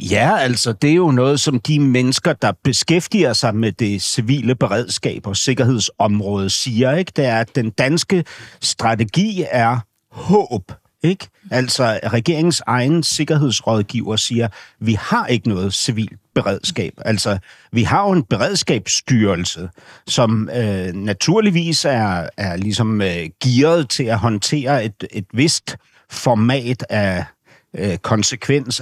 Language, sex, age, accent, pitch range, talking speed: Danish, male, 60-79, native, 110-140 Hz, 135 wpm